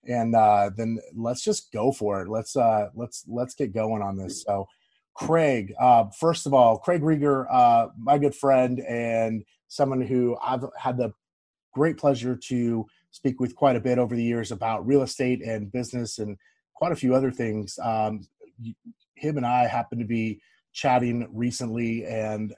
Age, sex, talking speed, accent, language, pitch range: 30-49, male, 175 wpm, American, English, 115-140 Hz